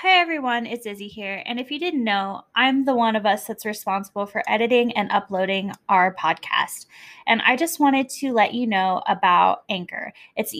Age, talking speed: 10-29, 200 wpm